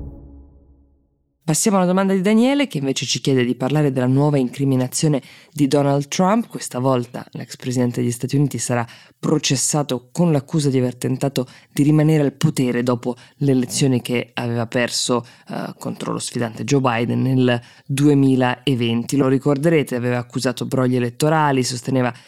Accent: native